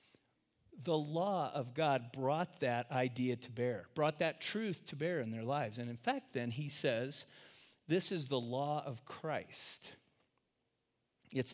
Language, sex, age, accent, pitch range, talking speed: English, male, 40-59, American, 120-155 Hz, 155 wpm